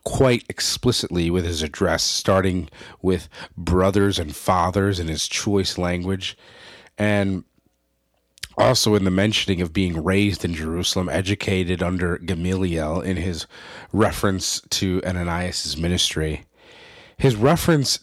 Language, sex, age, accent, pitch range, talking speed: English, male, 40-59, American, 90-110 Hz, 115 wpm